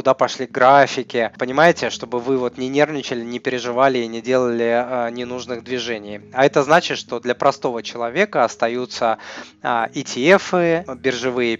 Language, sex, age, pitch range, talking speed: Russian, male, 20-39, 115-135 Hz, 145 wpm